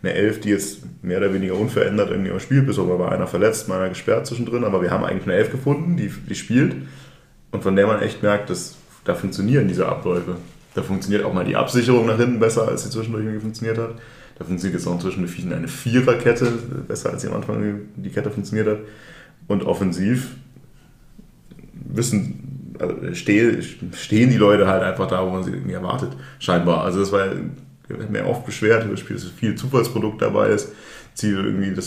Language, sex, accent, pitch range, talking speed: German, male, German, 95-120 Hz, 200 wpm